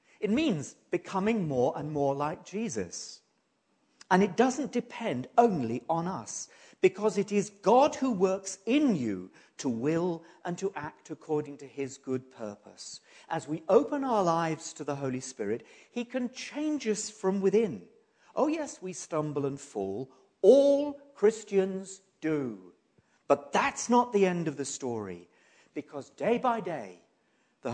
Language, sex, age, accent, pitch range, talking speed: English, male, 50-69, British, 125-205 Hz, 150 wpm